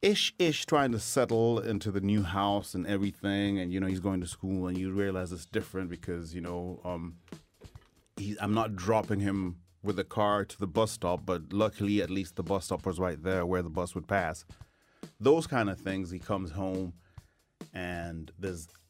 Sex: male